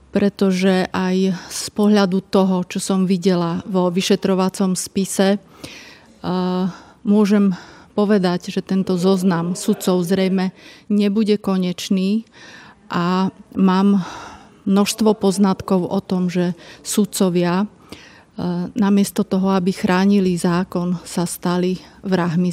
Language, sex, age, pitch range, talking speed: Slovak, female, 30-49, 185-200 Hz, 95 wpm